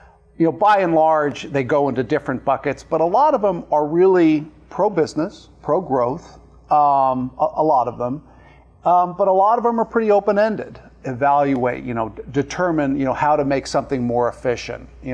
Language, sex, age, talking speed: English, male, 50-69, 185 wpm